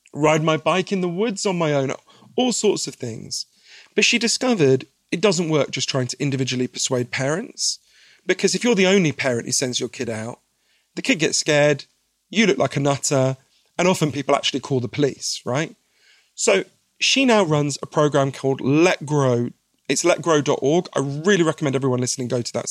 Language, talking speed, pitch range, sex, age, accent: English, 190 wpm, 130-180 Hz, male, 40-59, British